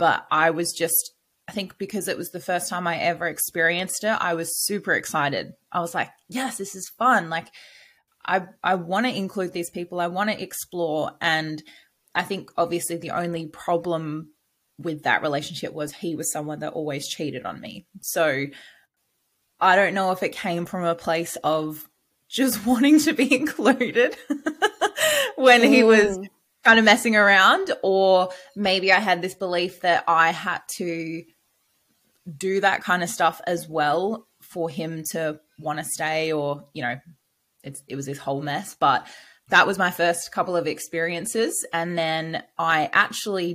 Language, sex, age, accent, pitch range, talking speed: English, female, 20-39, Australian, 160-195 Hz, 170 wpm